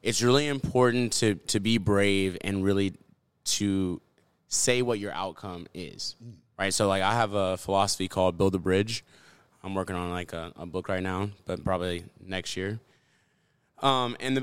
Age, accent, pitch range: 20-39, American, 95-120 Hz